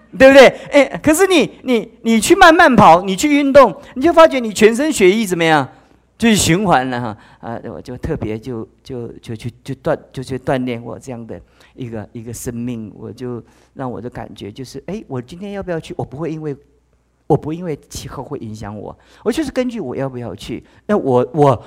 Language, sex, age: Chinese, male, 50-69